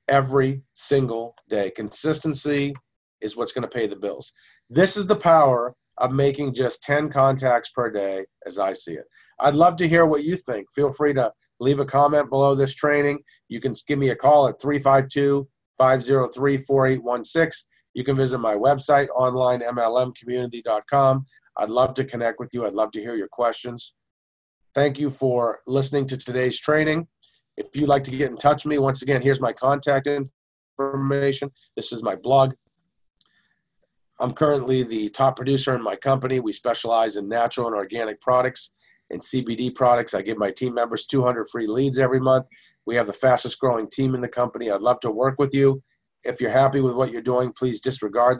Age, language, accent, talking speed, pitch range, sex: 40-59, English, American, 180 wpm, 120-140 Hz, male